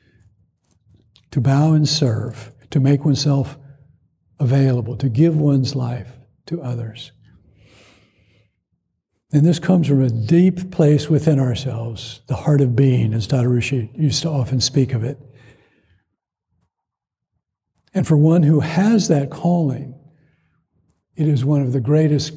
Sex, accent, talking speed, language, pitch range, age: male, American, 130 wpm, English, 125-150 Hz, 60-79